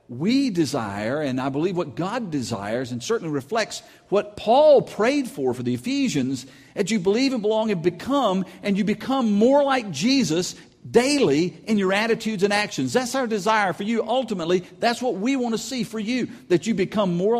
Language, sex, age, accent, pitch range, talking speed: English, male, 50-69, American, 130-210 Hz, 190 wpm